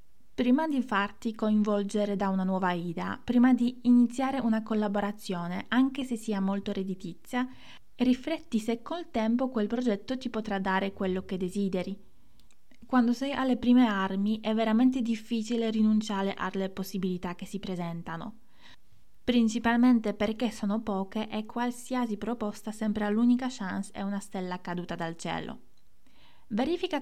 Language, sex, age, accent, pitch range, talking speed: Italian, female, 20-39, native, 200-240 Hz, 135 wpm